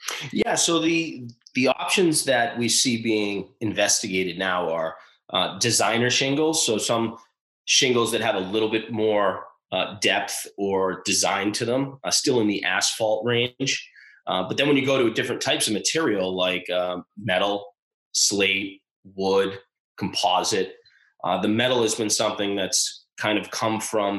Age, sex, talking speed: 20-39, male, 160 wpm